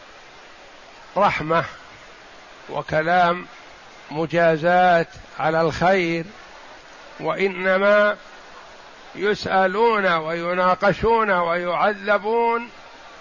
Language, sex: Arabic, male